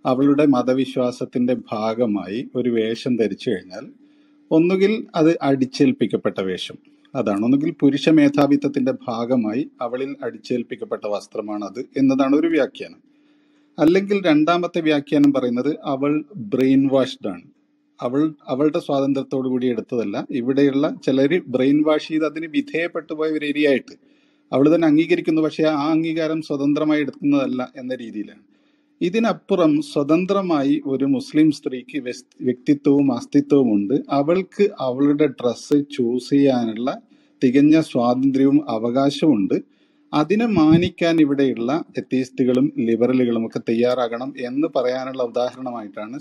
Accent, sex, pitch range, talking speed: native, male, 130-185 Hz, 105 wpm